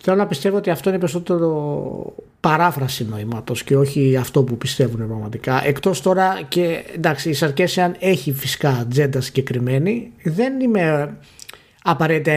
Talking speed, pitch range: 135 wpm, 130-185 Hz